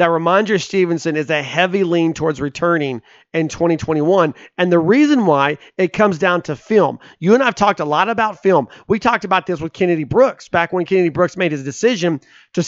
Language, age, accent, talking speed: English, 40-59, American, 210 wpm